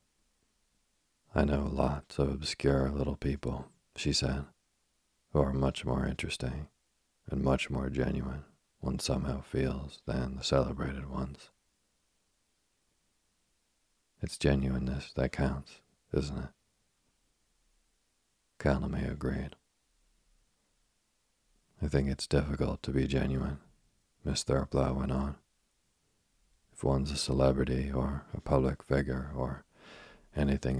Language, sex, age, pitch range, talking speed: English, male, 40-59, 65-70 Hz, 105 wpm